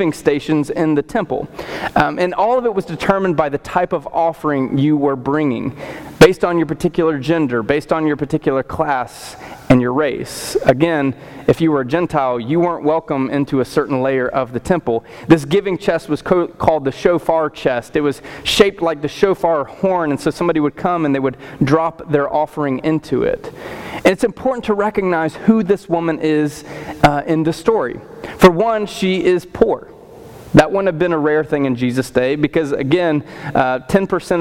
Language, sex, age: English, male, 30-49